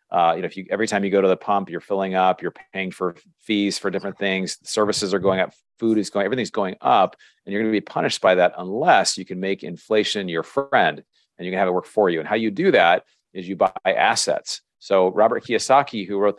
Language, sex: English, male